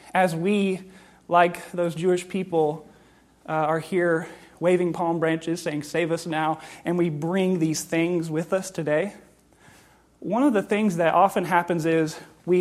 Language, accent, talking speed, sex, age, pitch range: English, American, 155 wpm, male, 30-49, 160-185 Hz